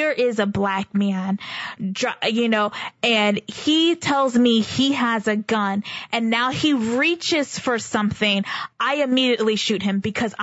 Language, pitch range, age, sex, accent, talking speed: English, 210-275 Hz, 20-39, female, American, 150 wpm